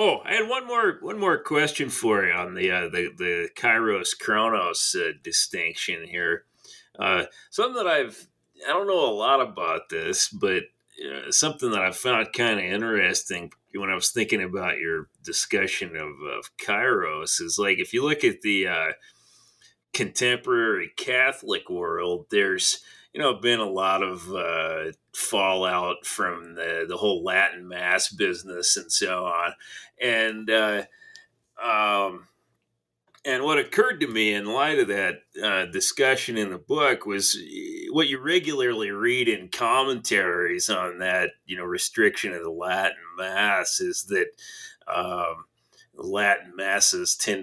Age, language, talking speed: 30-49, English, 150 wpm